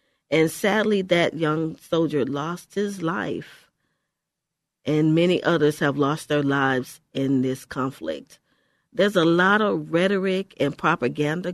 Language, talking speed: English, 130 wpm